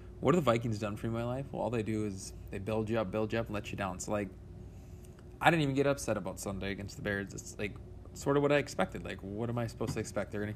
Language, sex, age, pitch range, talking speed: English, male, 20-39, 105-125 Hz, 305 wpm